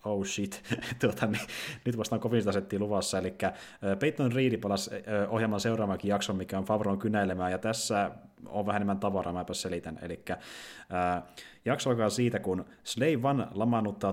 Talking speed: 150 wpm